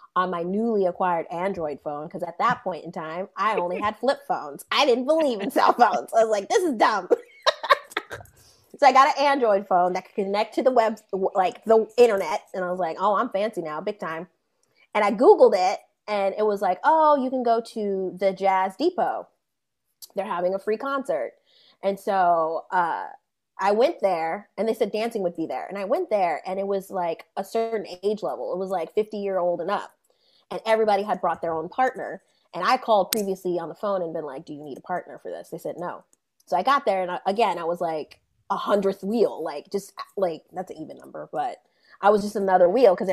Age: 20-39